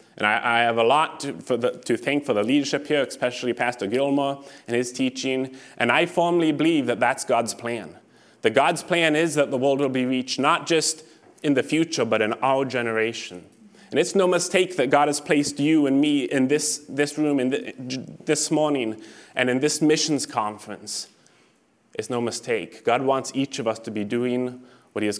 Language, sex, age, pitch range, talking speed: English, male, 20-39, 120-155 Hz, 200 wpm